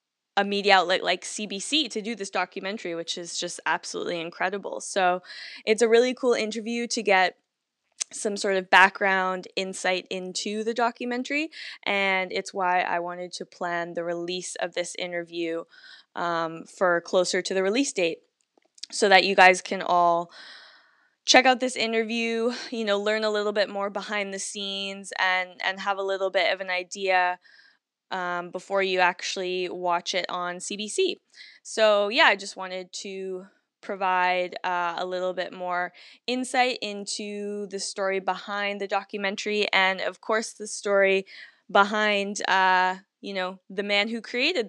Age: 10-29